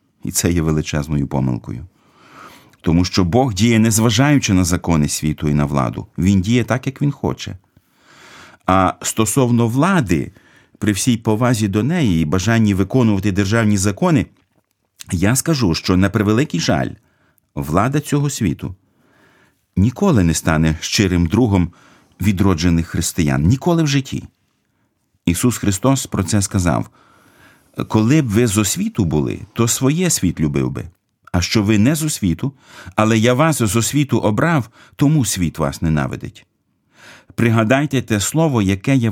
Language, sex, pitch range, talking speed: Ukrainian, male, 90-125 Hz, 140 wpm